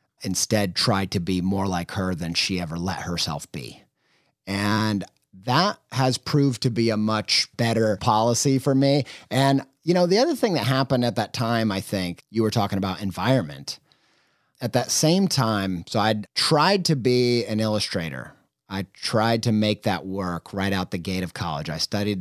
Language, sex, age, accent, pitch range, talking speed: English, male, 30-49, American, 100-130 Hz, 185 wpm